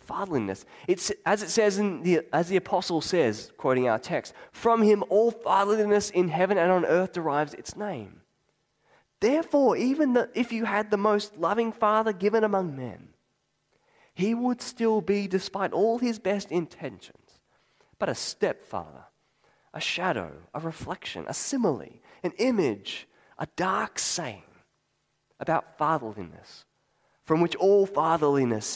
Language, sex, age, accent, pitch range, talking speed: English, male, 20-39, Australian, 155-215 Hz, 140 wpm